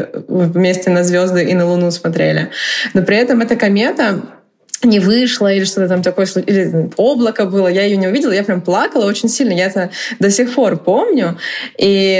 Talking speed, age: 180 wpm, 20-39